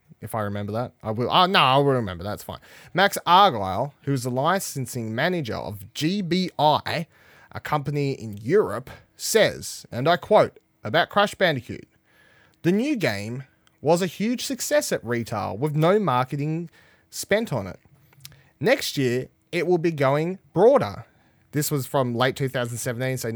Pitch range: 130-195 Hz